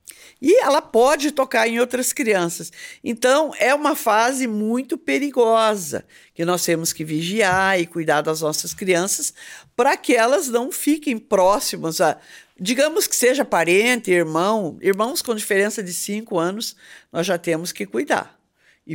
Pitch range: 180-260 Hz